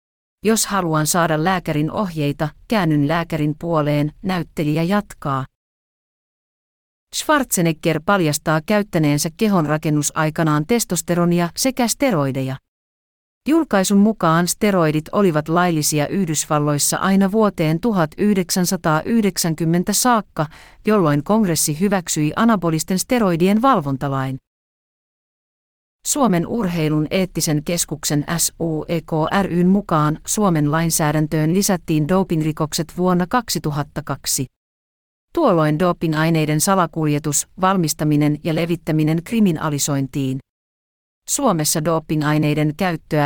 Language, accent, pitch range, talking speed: Finnish, native, 150-195 Hz, 75 wpm